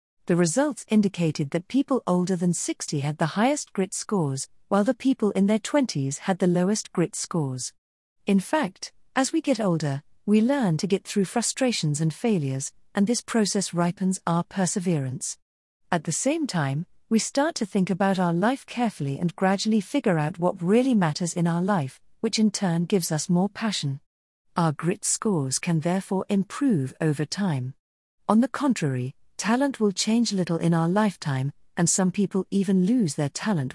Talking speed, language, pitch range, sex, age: 175 wpm, English, 155-215 Hz, female, 40-59